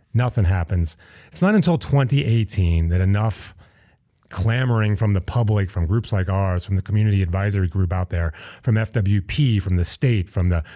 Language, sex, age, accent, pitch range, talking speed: English, male, 30-49, American, 95-115 Hz, 165 wpm